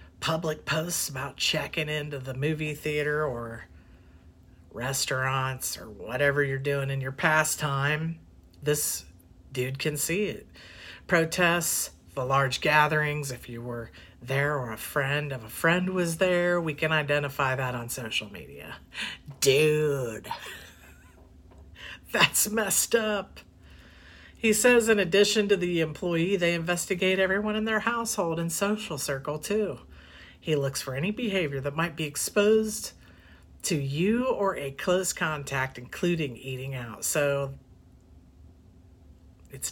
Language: English